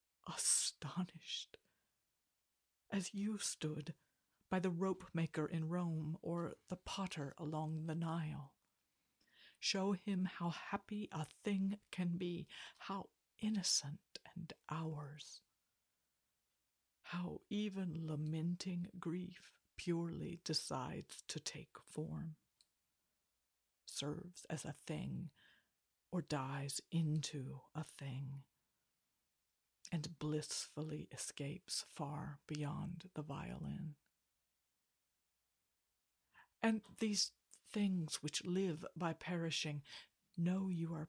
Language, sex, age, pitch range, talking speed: English, female, 50-69, 155-180 Hz, 90 wpm